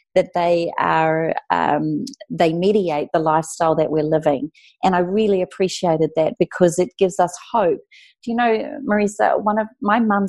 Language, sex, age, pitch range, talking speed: English, female, 40-59, 160-200 Hz, 170 wpm